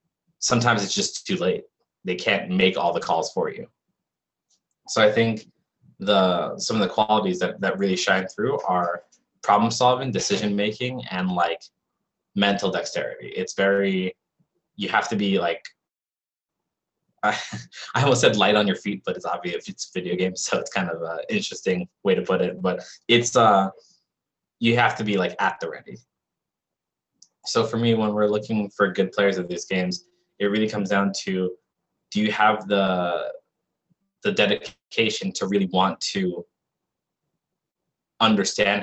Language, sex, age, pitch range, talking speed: English, male, 20-39, 95-120 Hz, 160 wpm